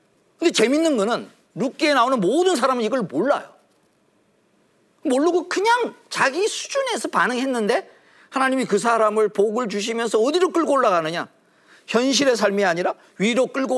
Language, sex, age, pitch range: Korean, male, 40-59, 155-260 Hz